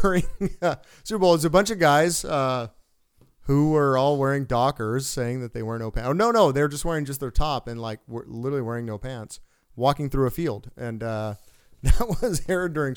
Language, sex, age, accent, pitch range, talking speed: English, male, 30-49, American, 115-160 Hz, 215 wpm